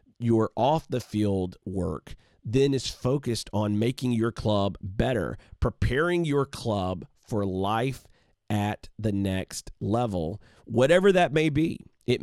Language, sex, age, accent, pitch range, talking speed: English, male, 40-59, American, 100-130 Hz, 130 wpm